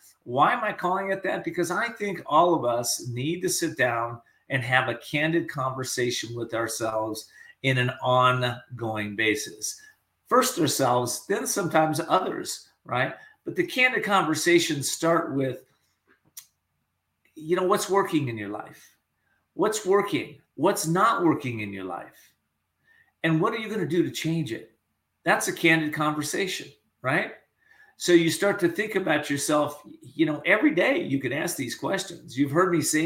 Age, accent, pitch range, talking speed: 50-69, American, 130-180 Hz, 165 wpm